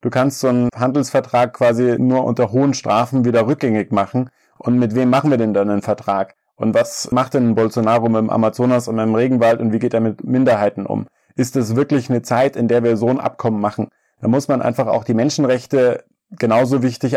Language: German